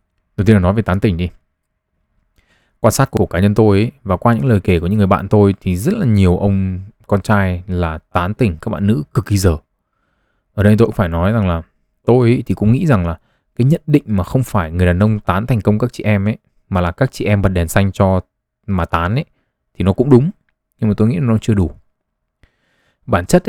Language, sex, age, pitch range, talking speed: Vietnamese, male, 20-39, 90-115 Hz, 245 wpm